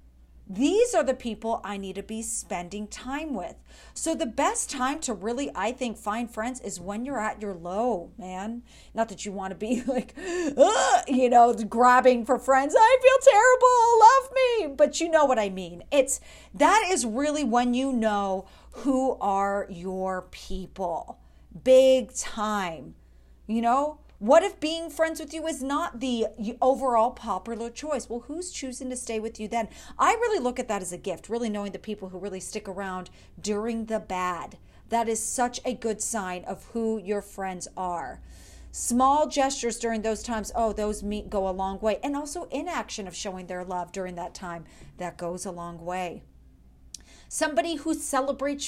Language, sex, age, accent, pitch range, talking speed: English, female, 40-59, American, 195-270 Hz, 180 wpm